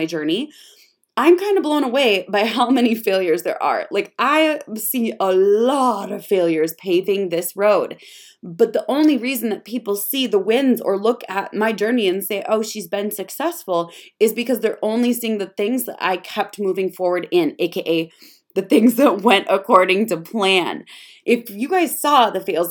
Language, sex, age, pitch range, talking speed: English, female, 20-39, 200-255 Hz, 180 wpm